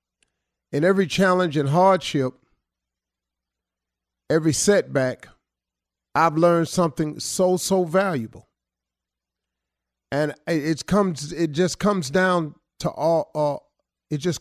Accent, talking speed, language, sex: American, 105 wpm, English, male